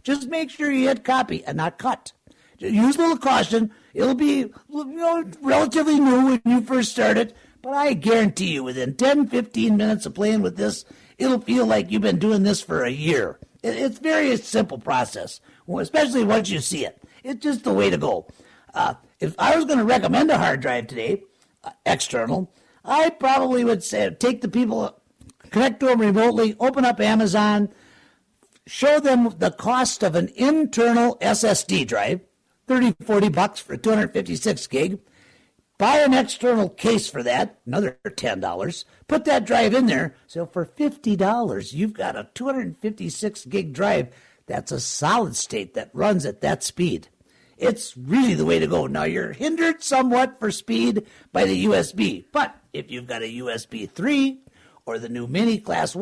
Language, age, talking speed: English, 50-69, 170 wpm